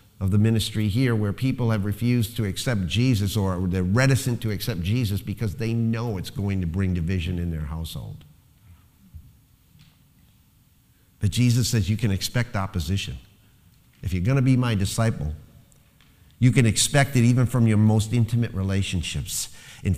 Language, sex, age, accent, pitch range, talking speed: English, male, 50-69, American, 95-120 Hz, 155 wpm